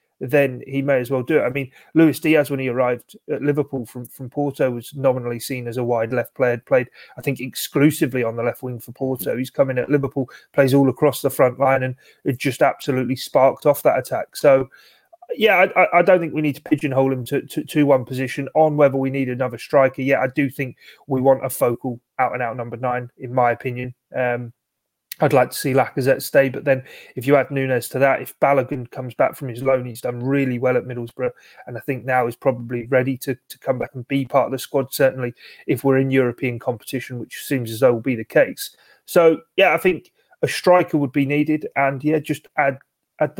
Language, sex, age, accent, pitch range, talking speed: English, male, 30-49, British, 125-145 Hz, 230 wpm